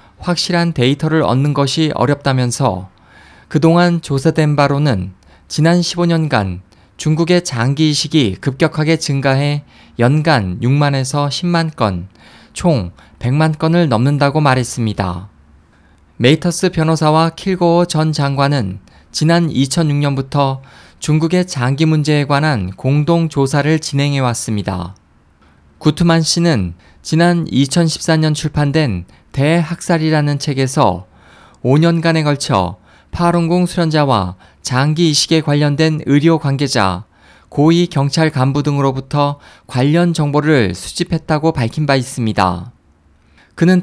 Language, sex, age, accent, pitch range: Korean, male, 20-39, native, 110-160 Hz